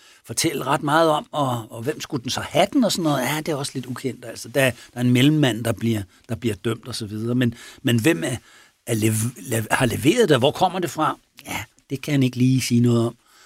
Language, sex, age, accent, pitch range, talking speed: Danish, male, 60-79, native, 115-145 Hz, 260 wpm